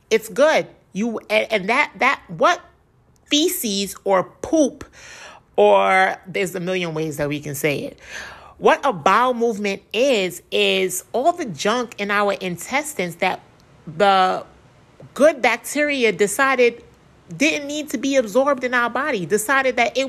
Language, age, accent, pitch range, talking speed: English, 30-49, American, 185-245 Hz, 145 wpm